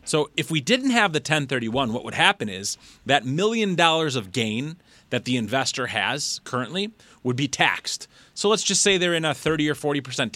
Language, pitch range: English, 125-180 Hz